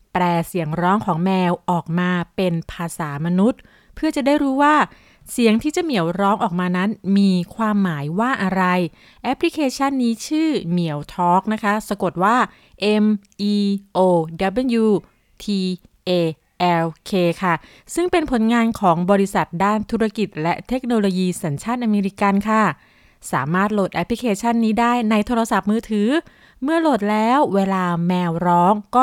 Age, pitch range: 20-39, 180-240 Hz